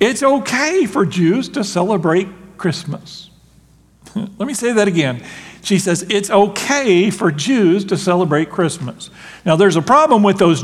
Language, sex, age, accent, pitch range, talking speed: English, male, 50-69, American, 160-215 Hz, 150 wpm